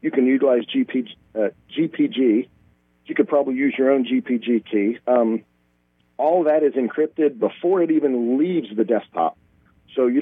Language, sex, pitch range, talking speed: English, male, 110-140 Hz, 155 wpm